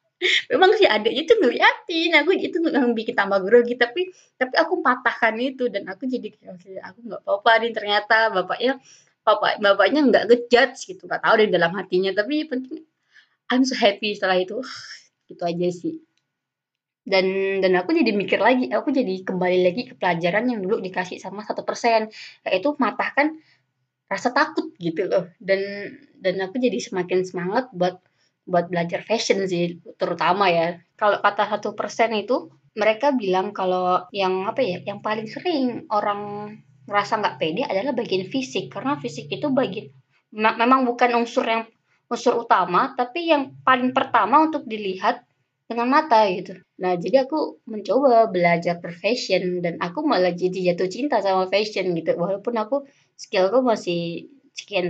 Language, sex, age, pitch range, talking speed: Indonesian, female, 20-39, 185-255 Hz, 155 wpm